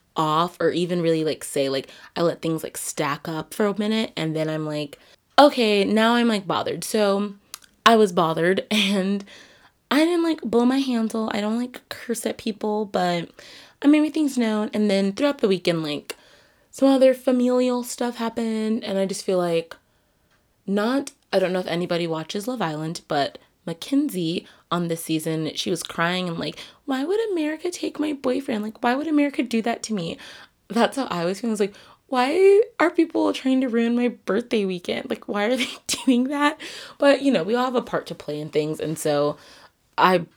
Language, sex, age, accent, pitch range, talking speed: English, female, 20-39, American, 175-255 Hz, 200 wpm